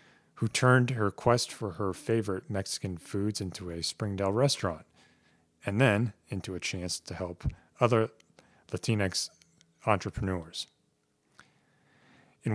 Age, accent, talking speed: 30-49, American, 115 wpm